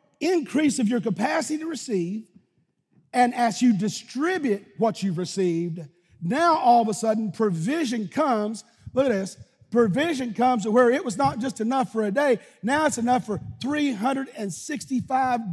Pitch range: 175-235 Hz